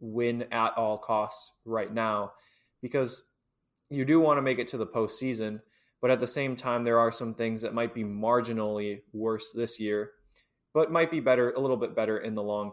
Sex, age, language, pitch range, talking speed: male, 20-39, English, 105-125 Hz, 205 wpm